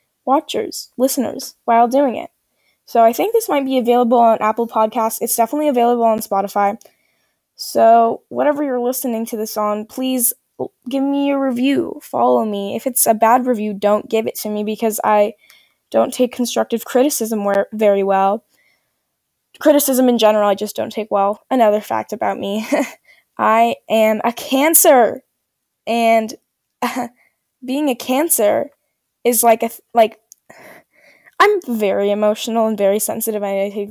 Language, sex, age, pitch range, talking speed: English, female, 10-29, 215-280 Hz, 150 wpm